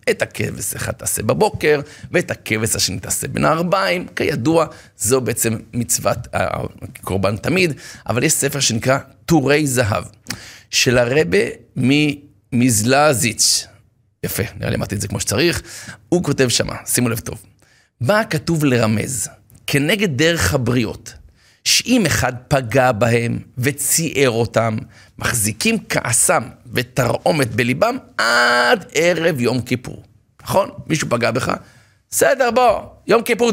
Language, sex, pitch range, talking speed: Hebrew, male, 115-160 Hz, 120 wpm